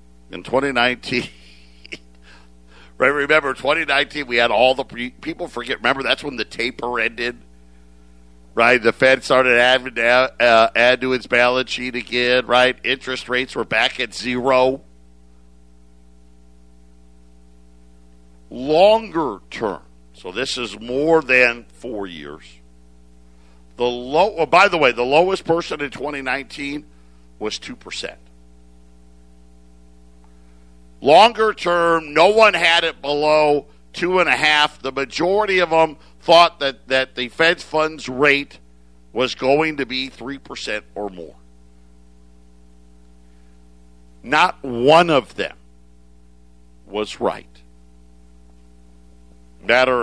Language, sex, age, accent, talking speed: English, male, 50-69, American, 115 wpm